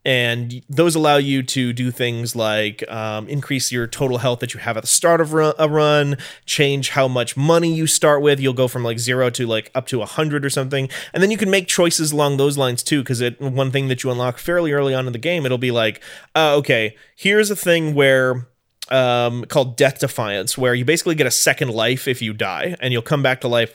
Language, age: English, 30-49